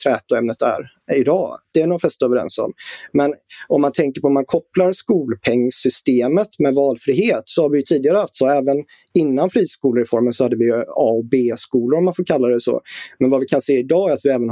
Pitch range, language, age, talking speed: 125-155 Hz, Swedish, 30-49, 230 wpm